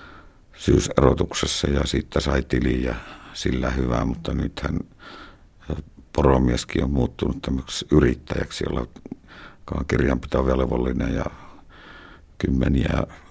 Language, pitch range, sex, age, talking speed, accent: Finnish, 65-80 Hz, male, 60-79, 85 wpm, native